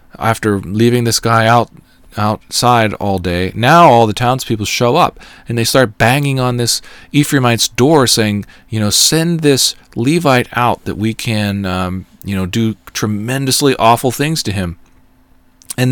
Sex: male